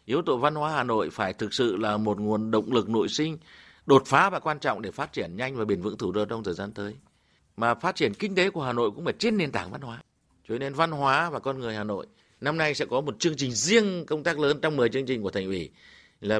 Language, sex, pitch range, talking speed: Vietnamese, male, 100-130 Hz, 280 wpm